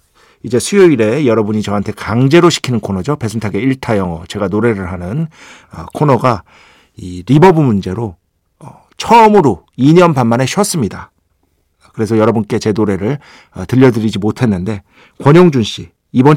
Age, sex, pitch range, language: 50-69, male, 105-155 Hz, Korean